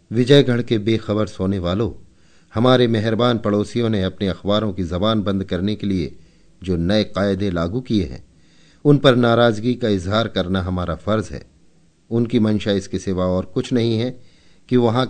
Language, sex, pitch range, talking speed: Hindi, male, 90-115 Hz, 165 wpm